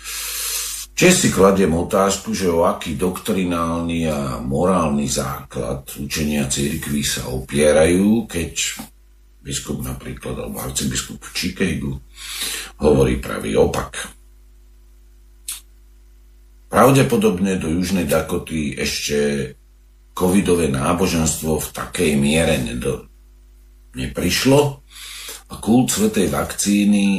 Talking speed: 90 wpm